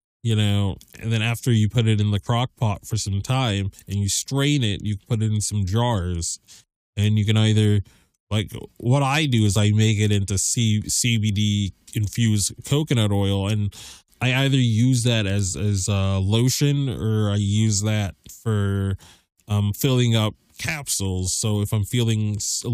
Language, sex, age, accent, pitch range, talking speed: English, male, 20-39, American, 100-115 Hz, 175 wpm